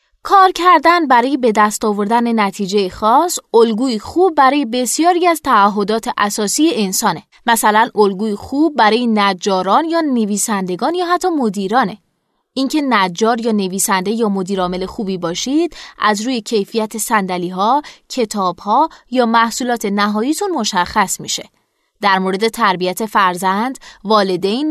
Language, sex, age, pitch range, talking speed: Persian, female, 20-39, 200-265 Hz, 125 wpm